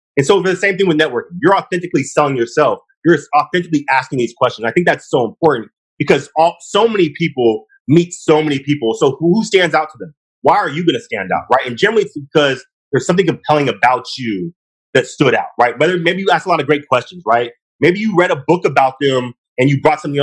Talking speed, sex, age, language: 235 wpm, male, 30-49, English